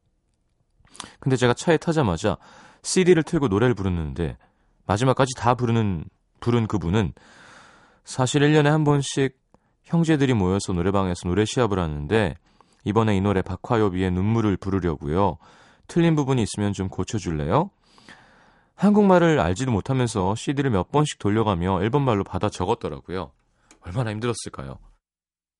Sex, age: male, 30-49